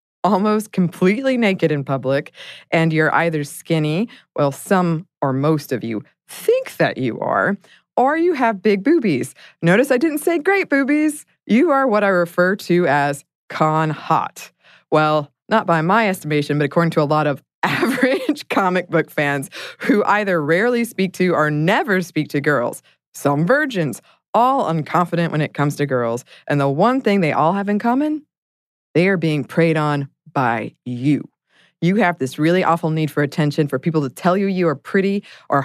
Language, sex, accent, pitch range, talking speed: English, female, American, 150-200 Hz, 180 wpm